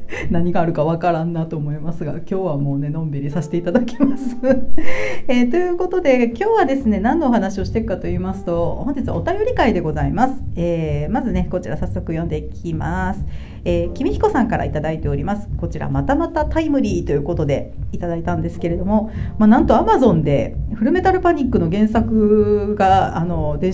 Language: Japanese